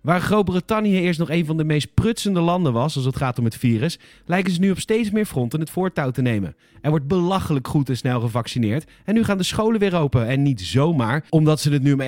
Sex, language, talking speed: male, Dutch, 250 wpm